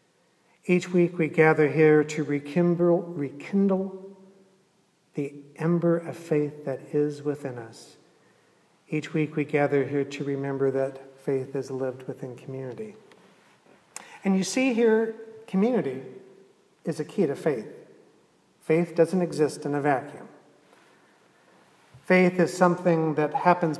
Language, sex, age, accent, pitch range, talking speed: English, male, 50-69, American, 145-185 Hz, 125 wpm